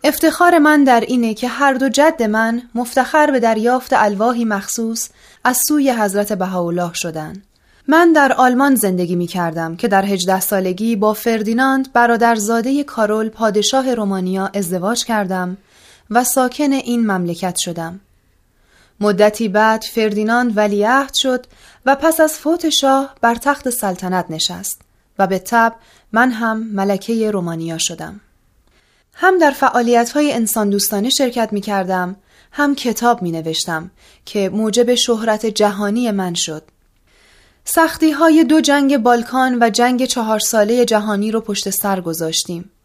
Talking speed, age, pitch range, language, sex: 130 wpm, 30-49, 200-255 Hz, Persian, female